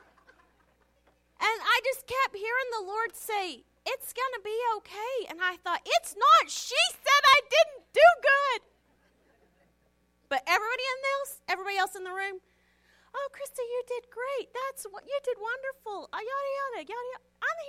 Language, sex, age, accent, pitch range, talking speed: English, female, 40-59, American, 275-435 Hz, 165 wpm